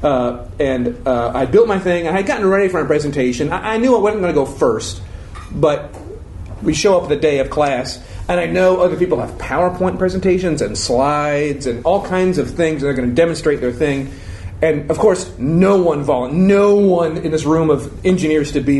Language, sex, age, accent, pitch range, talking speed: English, male, 40-59, American, 130-180 Hz, 210 wpm